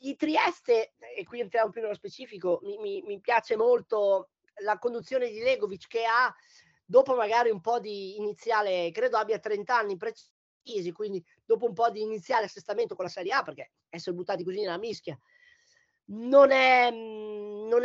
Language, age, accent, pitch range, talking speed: Italian, 30-49, native, 205-290 Hz, 165 wpm